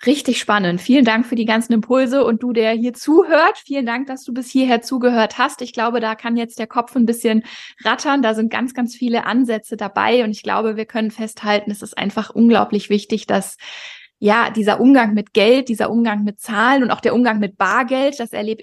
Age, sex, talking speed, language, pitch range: 20-39, female, 215 wpm, German, 210-245 Hz